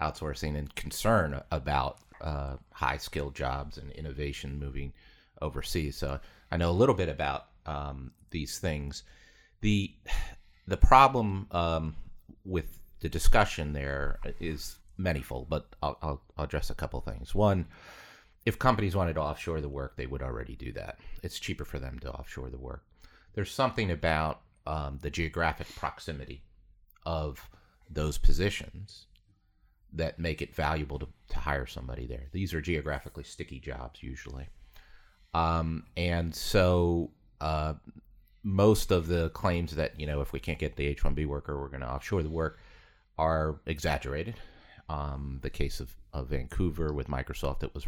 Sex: male